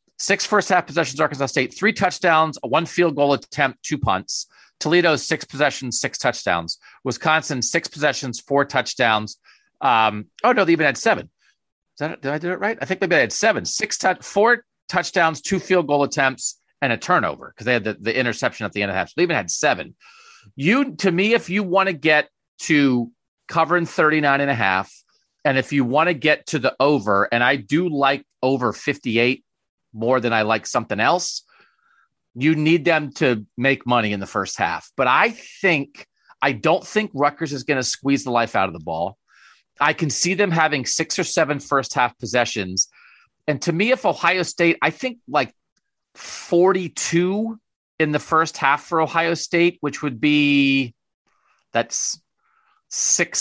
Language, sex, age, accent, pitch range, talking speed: English, male, 40-59, American, 130-175 Hz, 190 wpm